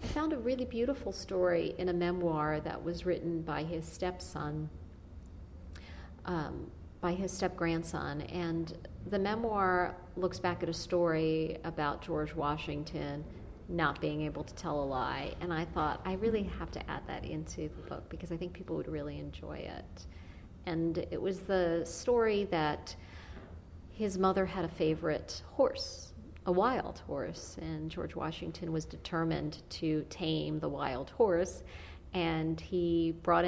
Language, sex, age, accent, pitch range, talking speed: English, female, 40-59, American, 145-175 Hz, 150 wpm